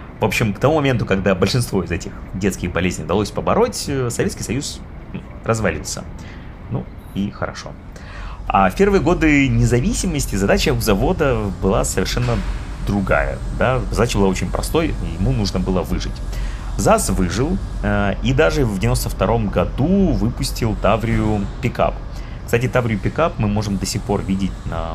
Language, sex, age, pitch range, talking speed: Russian, male, 30-49, 95-120 Hz, 140 wpm